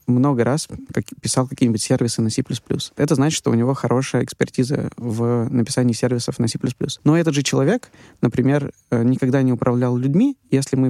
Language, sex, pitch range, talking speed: Russian, male, 125-150 Hz, 165 wpm